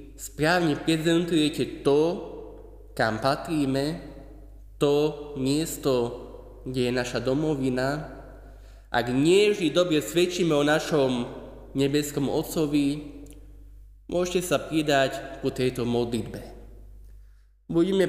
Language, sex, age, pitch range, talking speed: Slovak, male, 20-39, 110-150 Hz, 85 wpm